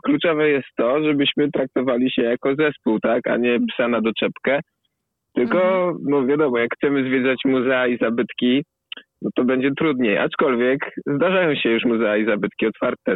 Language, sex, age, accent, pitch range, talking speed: Polish, male, 20-39, native, 110-135 Hz, 160 wpm